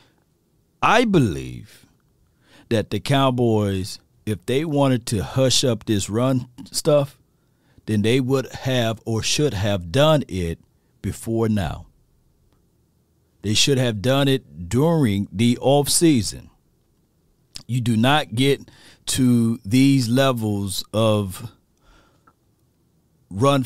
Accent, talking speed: American, 105 wpm